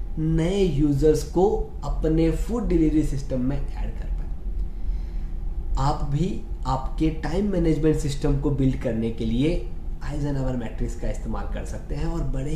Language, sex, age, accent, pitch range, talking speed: Hindi, male, 20-39, native, 140-190 Hz, 155 wpm